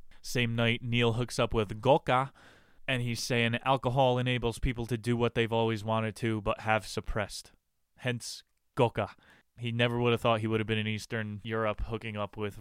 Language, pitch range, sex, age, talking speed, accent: English, 110-125 Hz, male, 20-39, 190 wpm, American